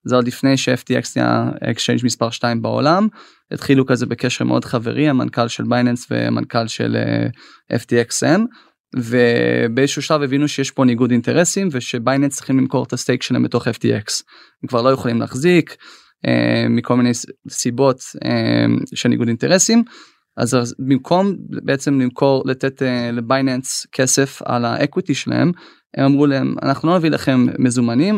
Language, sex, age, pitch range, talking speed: Hebrew, male, 20-39, 120-145 Hz, 140 wpm